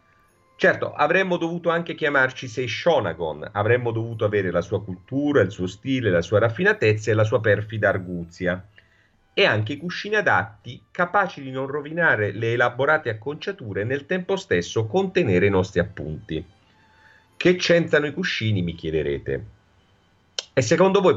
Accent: native